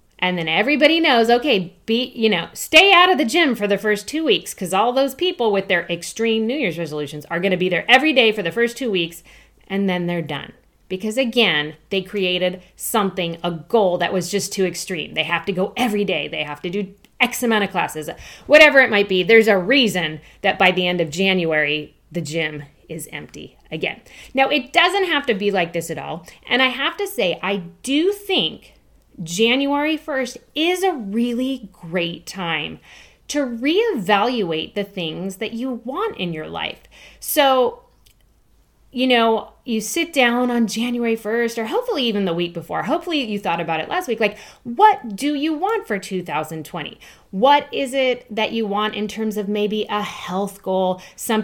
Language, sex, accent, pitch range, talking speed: English, female, American, 180-255 Hz, 195 wpm